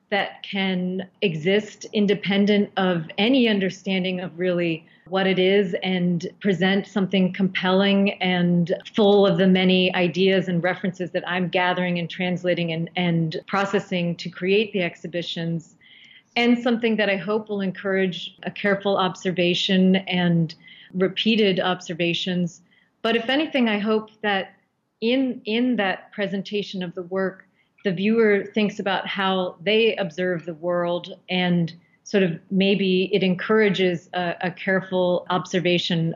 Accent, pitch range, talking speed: American, 180-205 Hz, 135 wpm